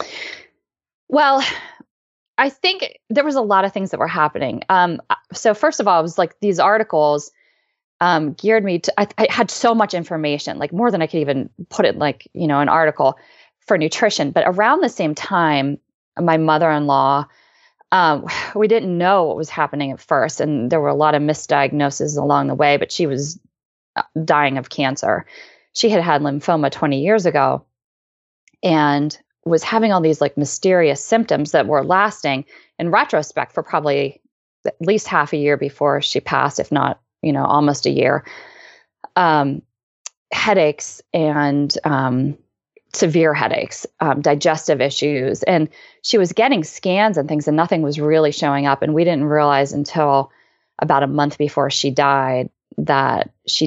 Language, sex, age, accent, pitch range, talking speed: English, female, 20-39, American, 145-190 Hz, 170 wpm